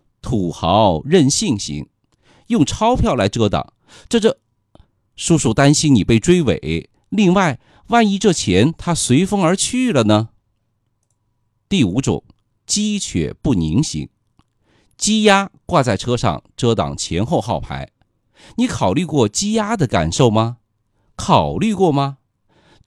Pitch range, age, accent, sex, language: 105-170 Hz, 50-69, native, male, Chinese